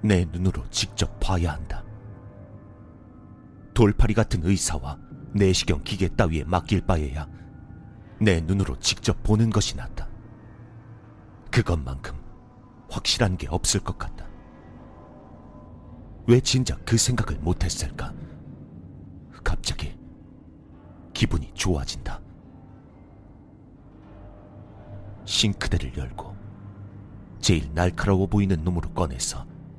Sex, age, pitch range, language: male, 40-59, 85-105 Hz, Korean